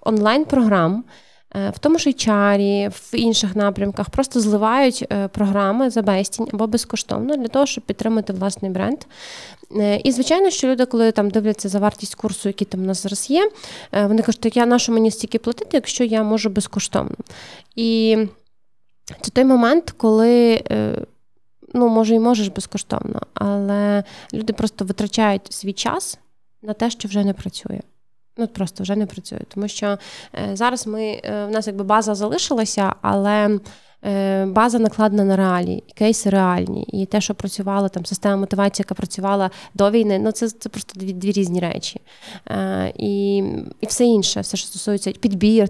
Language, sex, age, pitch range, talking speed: Ukrainian, female, 20-39, 200-245 Hz, 160 wpm